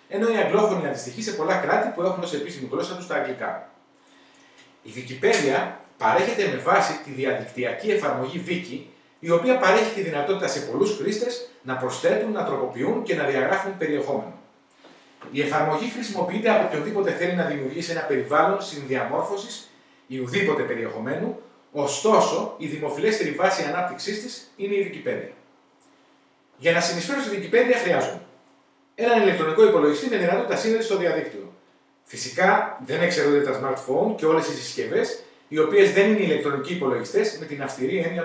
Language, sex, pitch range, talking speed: Greek, male, 150-225 Hz, 150 wpm